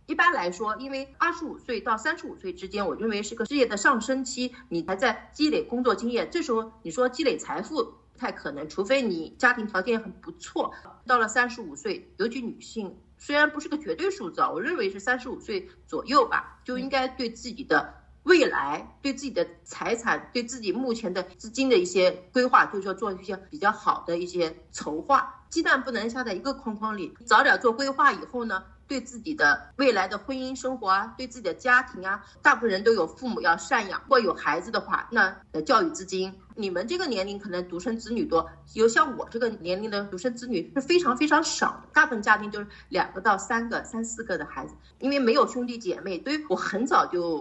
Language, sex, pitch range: Chinese, female, 190-265 Hz